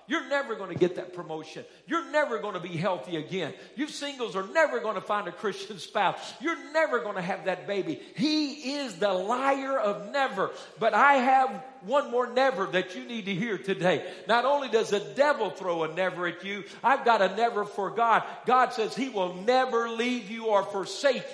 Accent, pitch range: American, 195-255 Hz